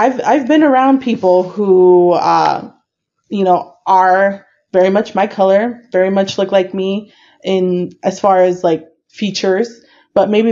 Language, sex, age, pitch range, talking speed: English, female, 20-39, 180-220 Hz, 155 wpm